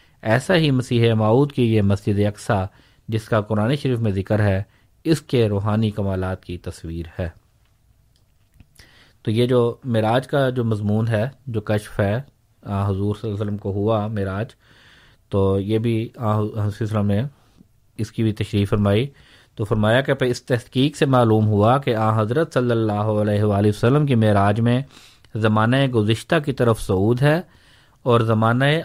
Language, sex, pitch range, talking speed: Urdu, male, 105-120 Hz, 160 wpm